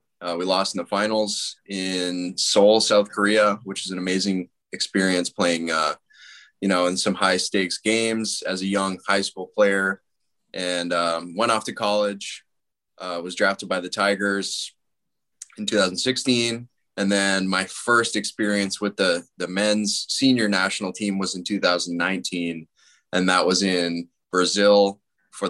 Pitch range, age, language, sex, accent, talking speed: 90-105 Hz, 20-39, English, male, American, 155 wpm